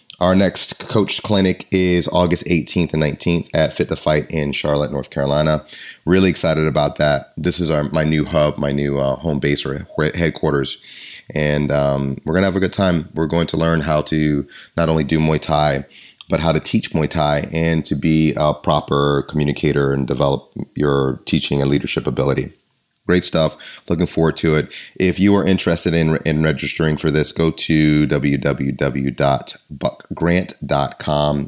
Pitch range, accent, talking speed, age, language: 70-85 Hz, American, 175 wpm, 30-49, English